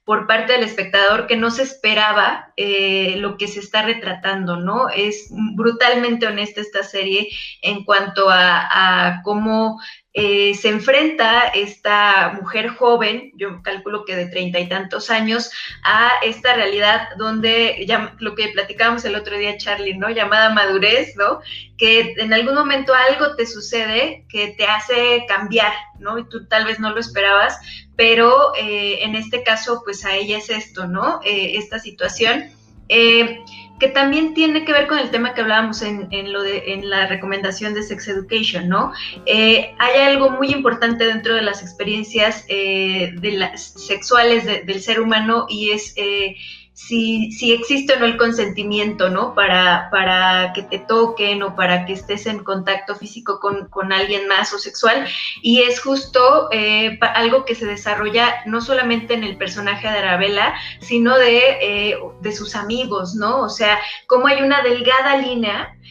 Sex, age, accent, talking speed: female, 20-39, Mexican, 165 wpm